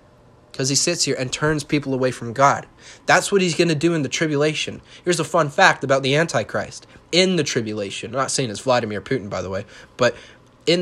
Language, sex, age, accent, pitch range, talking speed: English, male, 30-49, American, 120-150 Hz, 220 wpm